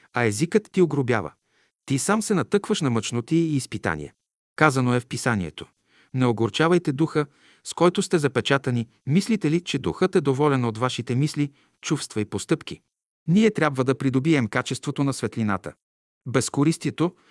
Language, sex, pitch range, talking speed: Bulgarian, male, 120-165 Hz, 150 wpm